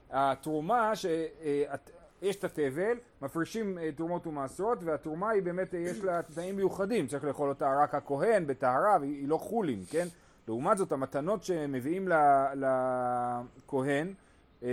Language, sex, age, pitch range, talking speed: Hebrew, male, 30-49, 140-195 Hz, 120 wpm